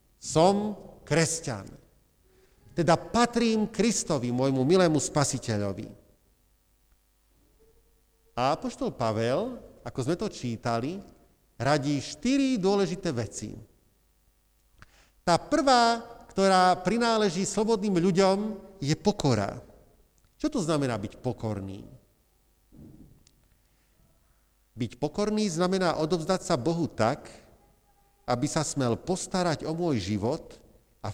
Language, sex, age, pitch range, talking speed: Slovak, male, 50-69, 120-190 Hz, 90 wpm